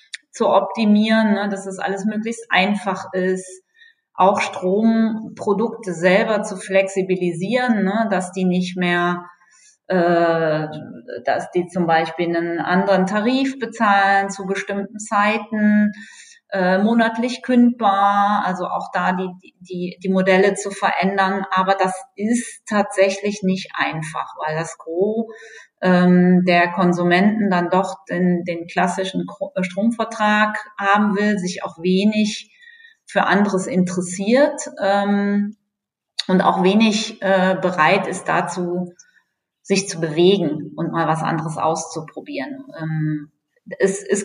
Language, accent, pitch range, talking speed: German, German, 180-210 Hz, 120 wpm